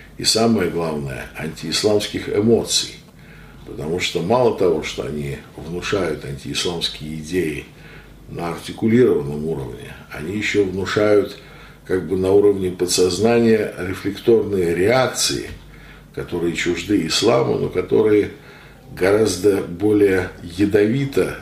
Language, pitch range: Russian, 85-105 Hz